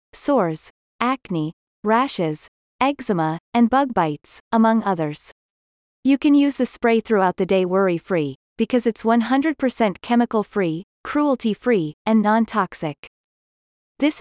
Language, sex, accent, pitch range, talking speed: English, female, American, 185-250 Hz, 110 wpm